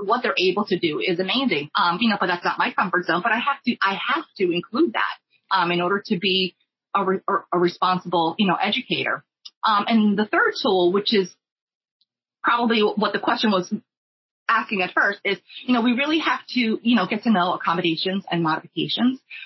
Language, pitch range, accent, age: English, 175-225 Hz, American, 30-49